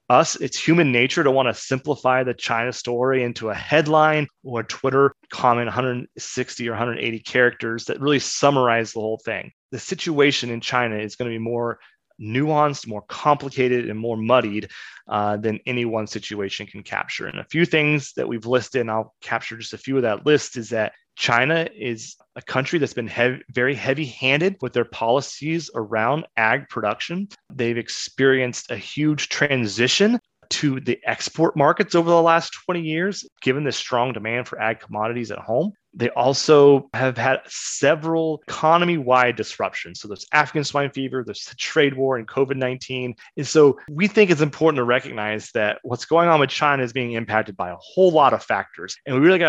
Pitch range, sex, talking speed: 115-150 Hz, male, 180 wpm